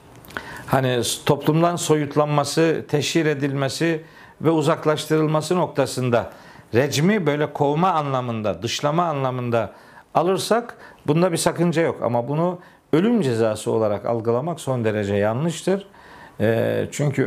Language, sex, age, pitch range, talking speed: Turkish, male, 50-69, 125-165 Hz, 100 wpm